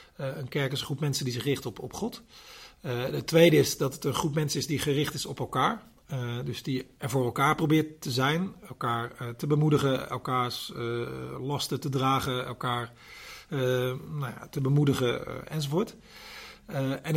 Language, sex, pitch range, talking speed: Dutch, male, 125-145 Hz, 195 wpm